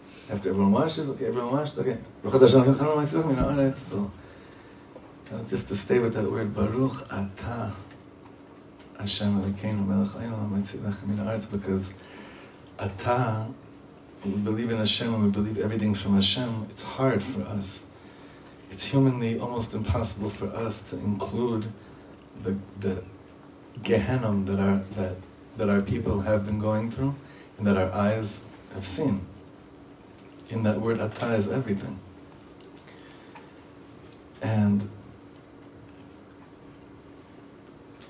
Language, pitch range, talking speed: English, 95-115 Hz, 105 wpm